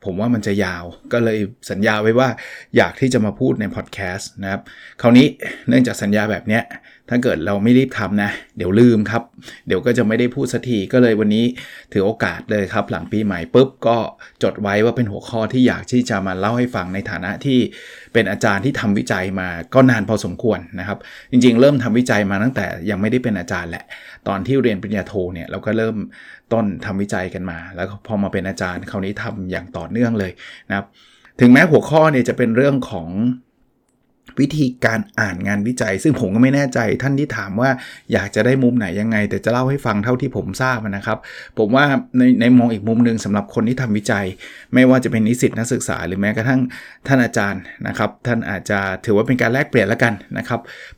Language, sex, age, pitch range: Thai, male, 20-39, 100-125 Hz